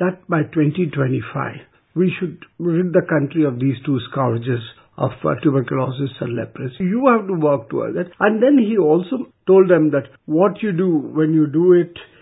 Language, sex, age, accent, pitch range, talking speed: English, male, 50-69, Indian, 150-200 Hz, 180 wpm